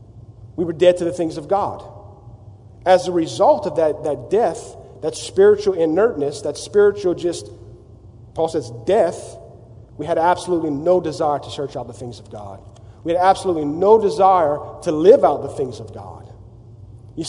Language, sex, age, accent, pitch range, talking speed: English, male, 40-59, American, 115-195 Hz, 170 wpm